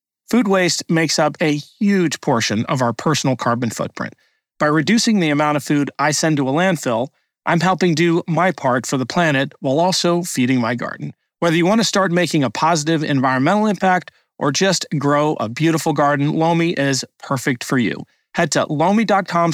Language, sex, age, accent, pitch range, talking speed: English, male, 40-59, American, 140-175 Hz, 185 wpm